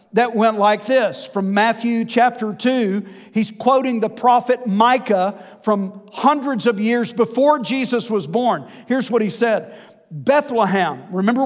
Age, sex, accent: 50-69, male, American